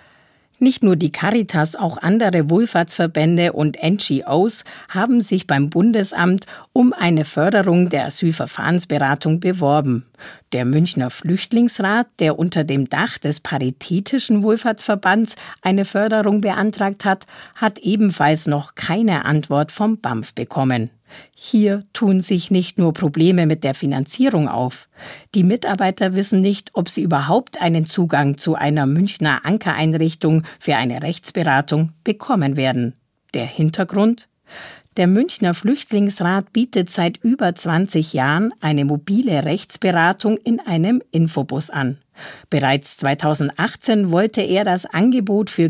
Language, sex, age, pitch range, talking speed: German, female, 50-69, 150-210 Hz, 120 wpm